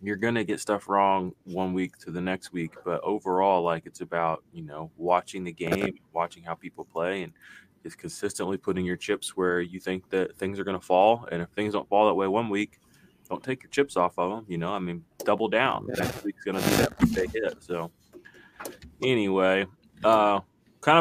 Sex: male